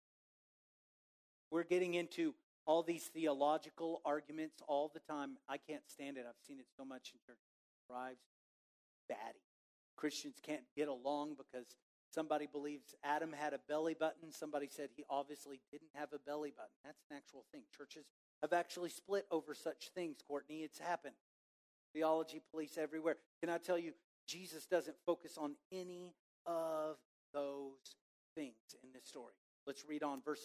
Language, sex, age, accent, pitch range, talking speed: English, male, 40-59, American, 150-215 Hz, 155 wpm